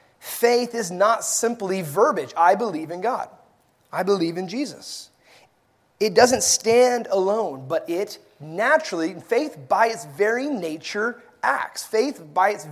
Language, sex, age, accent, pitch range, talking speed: English, male, 30-49, American, 160-235 Hz, 135 wpm